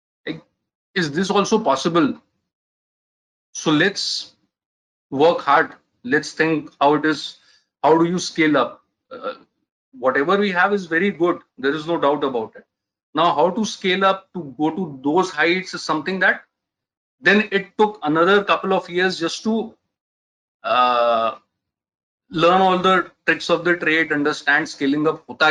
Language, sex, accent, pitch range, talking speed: Tamil, male, native, 150-190 Hz, 155 wpm